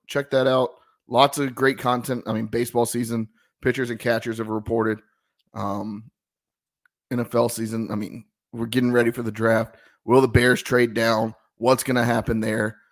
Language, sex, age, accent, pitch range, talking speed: English, male, 30-49, American, 110-125 Hz, 170 wpm